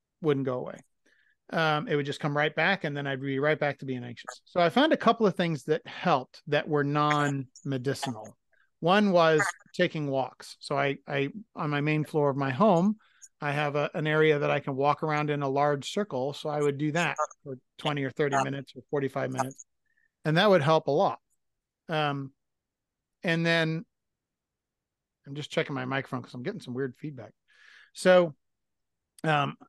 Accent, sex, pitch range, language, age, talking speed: American, male, 140-180 Hz, English, 40-59, 190 wpm